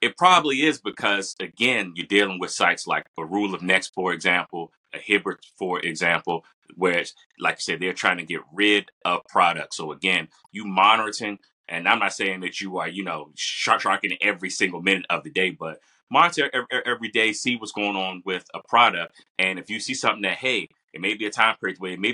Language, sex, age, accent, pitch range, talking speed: English, male, 30-49, American, 90-110 Hz, 215 wpm